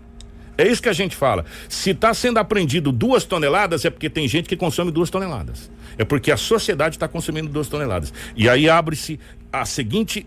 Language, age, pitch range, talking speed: Portuguese, 60-79, 110-160 Hz, 195 wpm